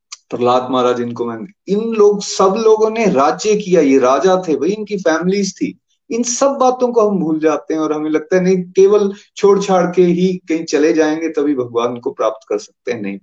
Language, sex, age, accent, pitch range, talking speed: Hindi, male, 30-49, native, 150-210 Hz, 215 wpm